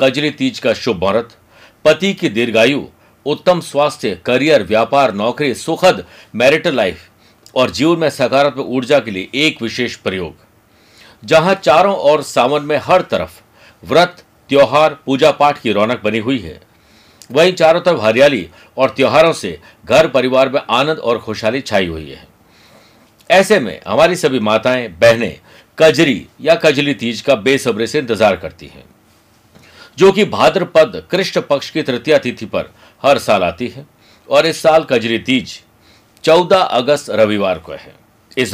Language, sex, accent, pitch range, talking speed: Hindi, male, native, 110-160 Hz, 155 wpm